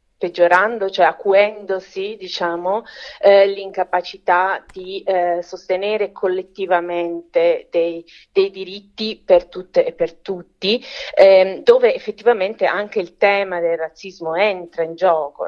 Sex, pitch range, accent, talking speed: female, 185-220 Hz, native, 110 wpm